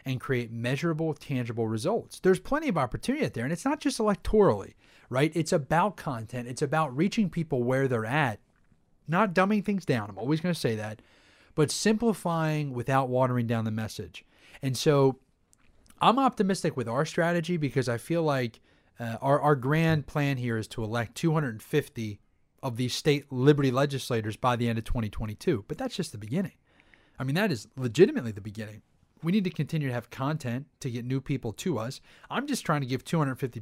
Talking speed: 185 wpm